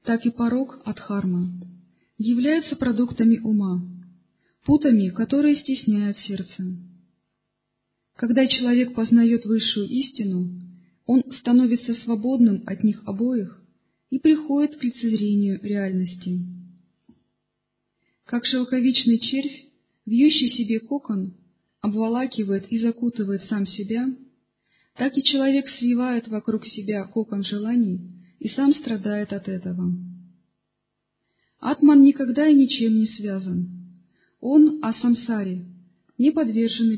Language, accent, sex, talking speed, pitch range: Russian, native, female, 100 wpm, 195-250 Hz